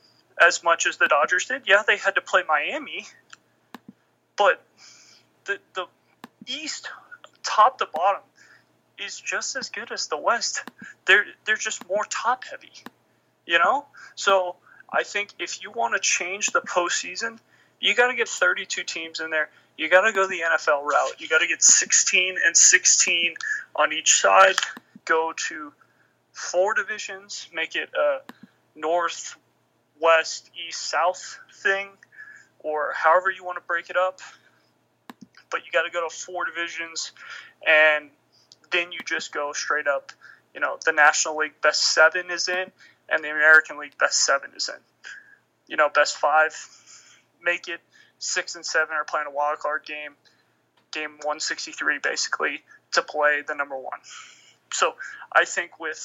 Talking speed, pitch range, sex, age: 160 wpm, 155-215 Hz, male, 30-49